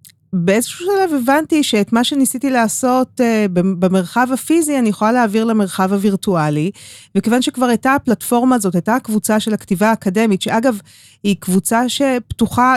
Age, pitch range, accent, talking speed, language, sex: 30-49, 180-235 Hz, native, 140 wpm, Hebrew, female